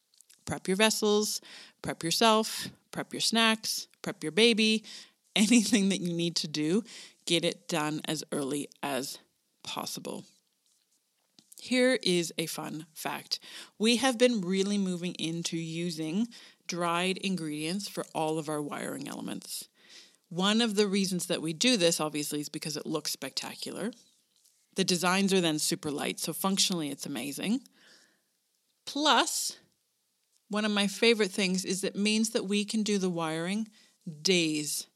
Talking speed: 145 wpm